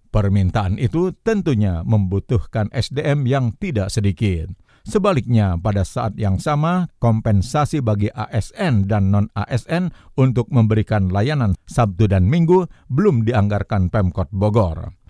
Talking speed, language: 110 wpm, Indonesian